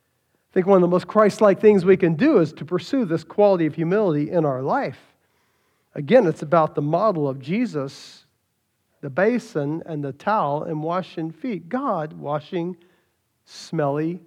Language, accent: English, American